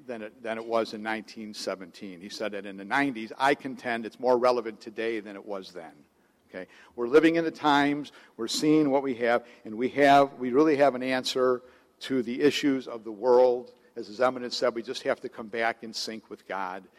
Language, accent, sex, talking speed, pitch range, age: English, American, male, 210 wpm, 115-130 Hz, 60-79